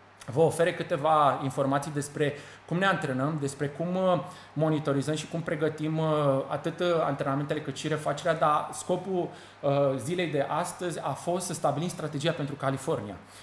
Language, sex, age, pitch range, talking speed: Romanian, male, 20-39, 150-200 Hz, 140 wpm